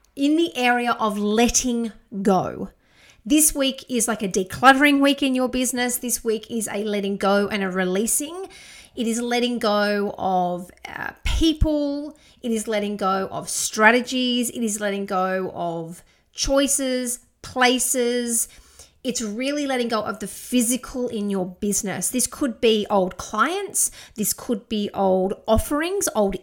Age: 30-49